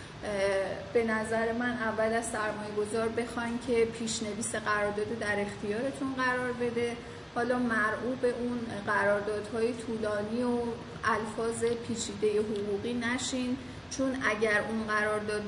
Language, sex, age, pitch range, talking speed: Persian, female, 30-49, 210-245 Hz, 115 wpm